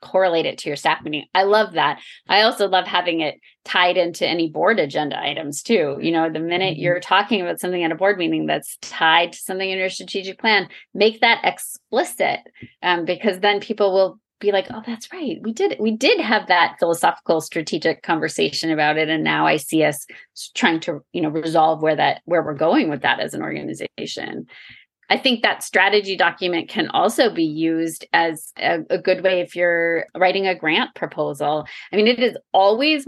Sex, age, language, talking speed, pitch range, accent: female, 30-49, English, 200 wpm, 165-205 Hz, American